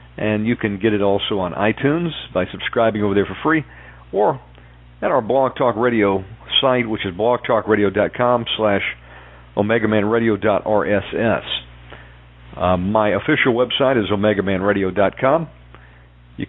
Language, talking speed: English, 115 wpm